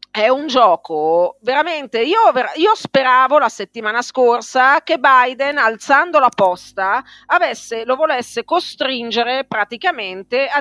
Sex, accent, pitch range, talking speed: female, native, 200-275 Hz, 115 wpm